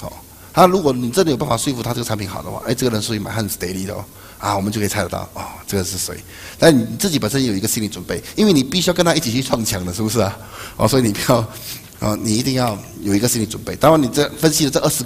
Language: Chinese